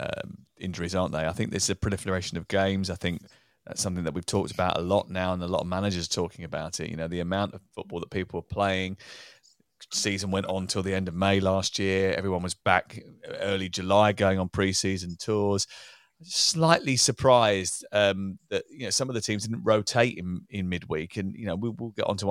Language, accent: English, British